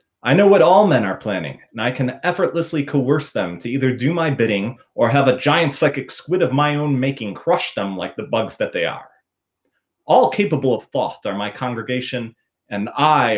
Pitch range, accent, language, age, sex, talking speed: 115-150 Hz, American, English, 30-49, male, 200 wpm